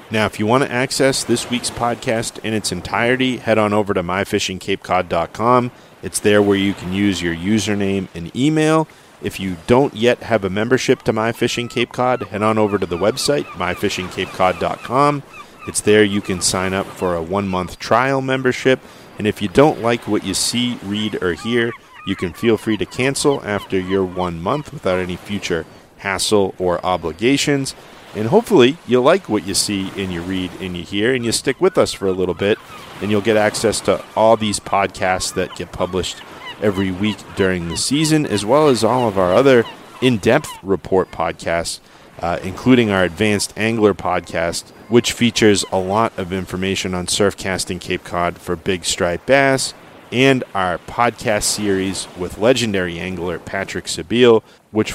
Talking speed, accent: 175 wpm, American